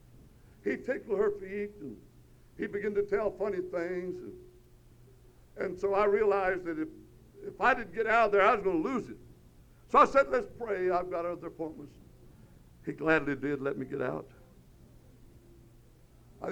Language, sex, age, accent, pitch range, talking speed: English, male, 60-79, American, 145-205 Hz, 175 wpm